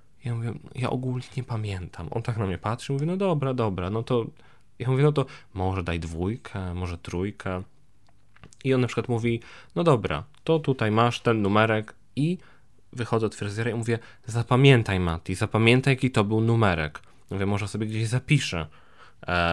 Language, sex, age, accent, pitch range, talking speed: Polish, male, 20-39, native, 110-130 Hz, 180 wpm